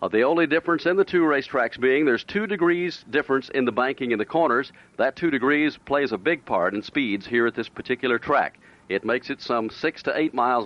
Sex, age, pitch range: male, 50-69, 115-155 Hz